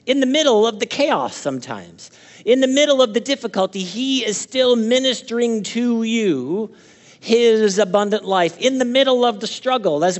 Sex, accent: male, American